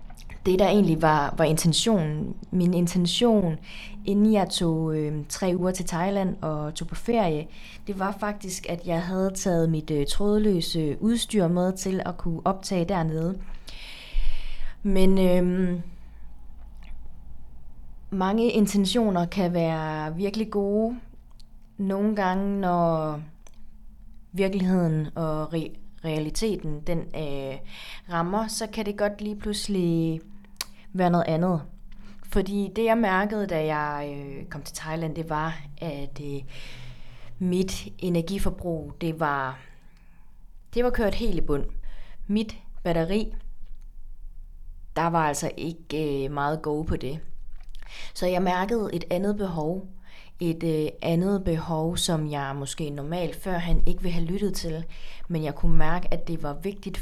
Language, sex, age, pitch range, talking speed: Danish, female, 20-39, 150-195 Hz, 130 wpm